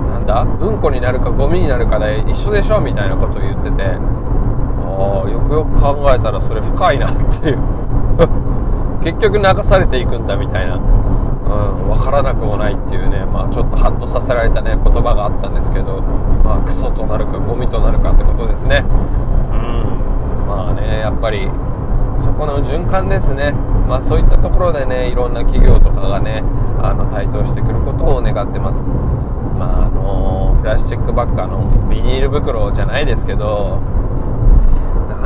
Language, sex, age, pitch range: Japanese, male, 20-39, 100-120 Hz